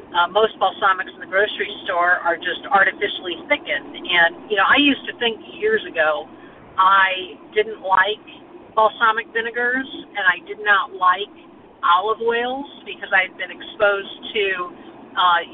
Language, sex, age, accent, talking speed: English, female, 50-69, American, 150 wpm